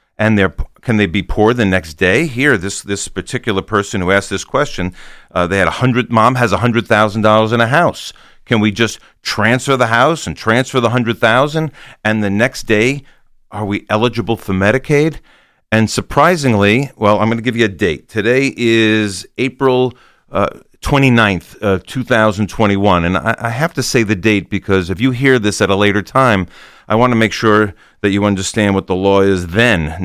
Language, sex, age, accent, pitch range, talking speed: English, male, 40-59, American, 100-130 Hz, 195 wpm